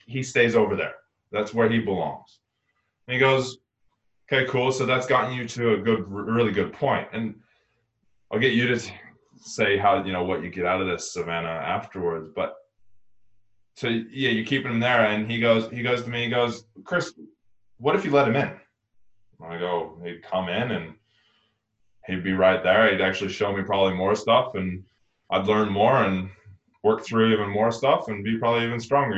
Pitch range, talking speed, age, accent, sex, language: 100-120 Hz, 195 wpm, 20-39, American, male, English